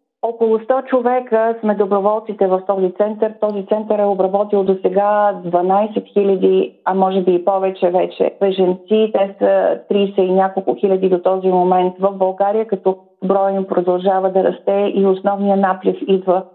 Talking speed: 155 wpm